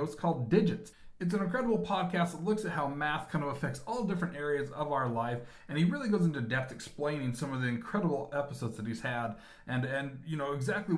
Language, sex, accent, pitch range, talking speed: English, male, American, 125-165 Hz, 225 wpm